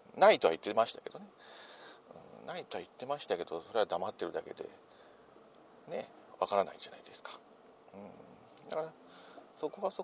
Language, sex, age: Japanese, male, 50-69